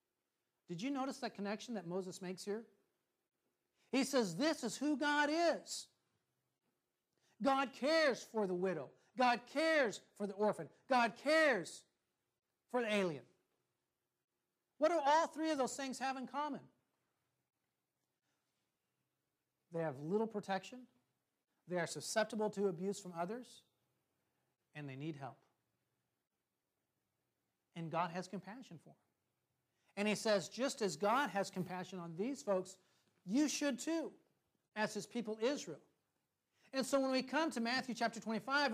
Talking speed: 140 wpm